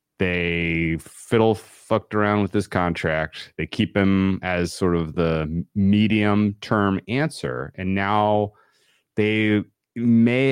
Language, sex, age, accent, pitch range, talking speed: English, male, 30-49, American, 85-110 Hz, 120 wpm